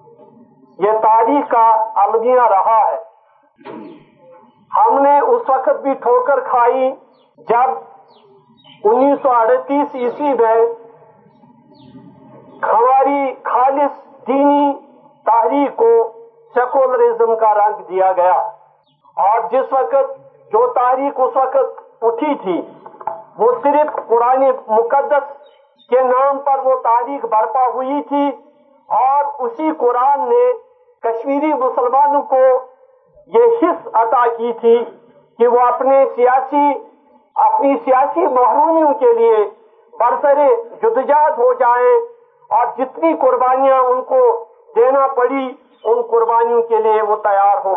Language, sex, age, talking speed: Urdu, male, 50-69, 110 wpm